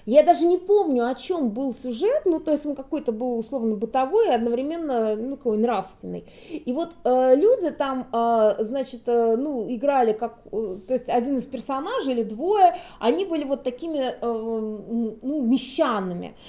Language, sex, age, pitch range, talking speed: Russian, female, 20-39, 240-345 Hz, 170 wpm